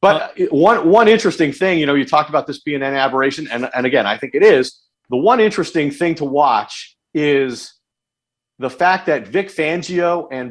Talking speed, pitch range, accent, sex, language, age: 195 wpm, 135-175 Hz, American, male, English, 50-69